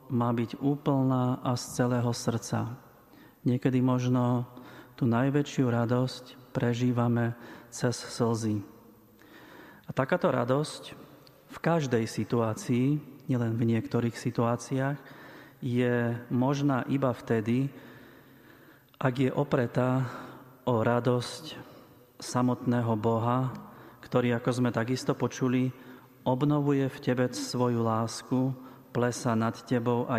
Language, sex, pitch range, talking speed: Slovak, male, 115-130 Hz, 100 wpm